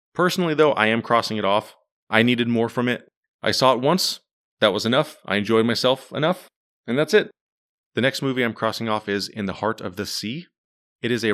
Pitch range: 105-125 Hz